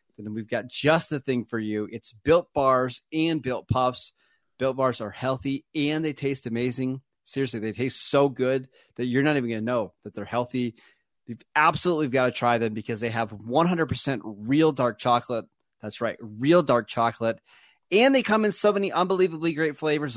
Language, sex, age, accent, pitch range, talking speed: English, male, 30-49, American, 120-150 Hz, 190 wpm